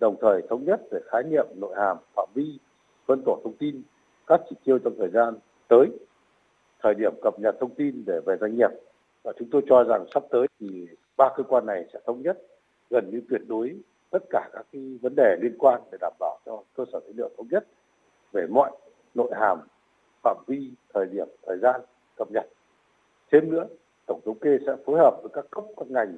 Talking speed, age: 215 wpm, 60-79